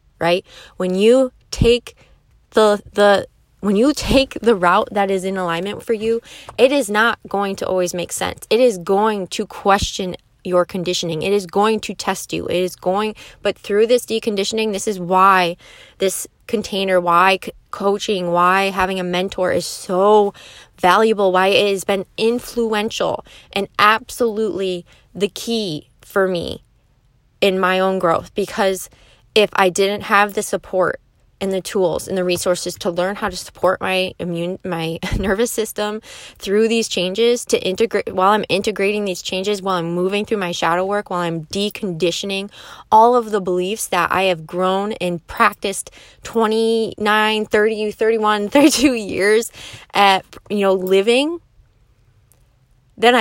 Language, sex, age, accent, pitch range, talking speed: English, female, 20-39, American, 180-215 Hz, 155 wpm